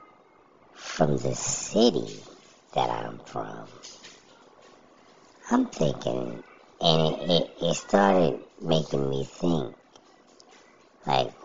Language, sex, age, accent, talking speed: English, male, 50-69, American, 90 wpm